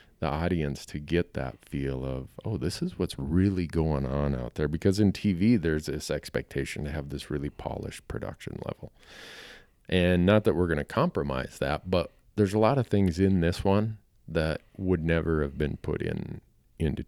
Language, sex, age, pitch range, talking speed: English, male, 40-59, 75-100 Hz, 190 wpm